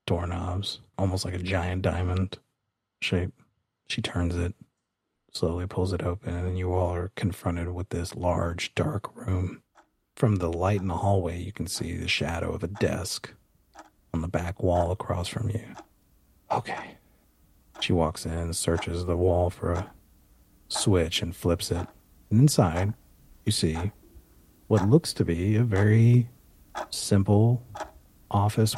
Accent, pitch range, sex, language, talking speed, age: American, 85-110 Hz, male, English, 150 wpm, 40-59